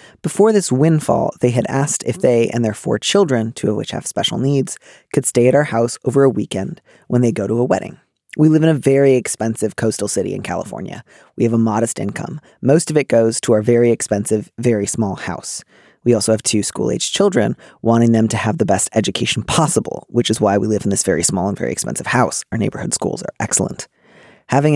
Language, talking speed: English, 220 wpm